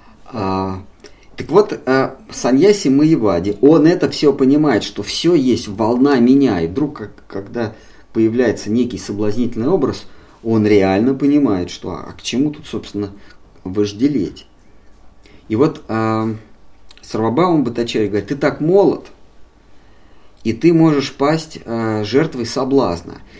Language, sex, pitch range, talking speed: Russian, male, 95-135 Hz, 130 wpm